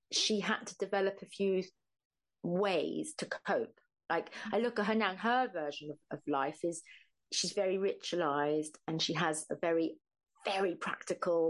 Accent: British